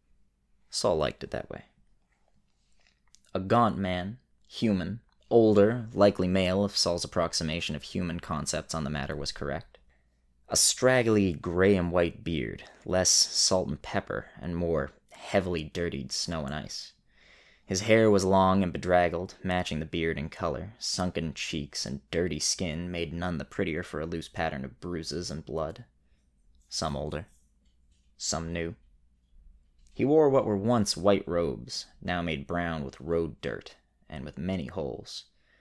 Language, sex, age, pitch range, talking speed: English, male, 20-39, 70-95 Hz, 150 wpm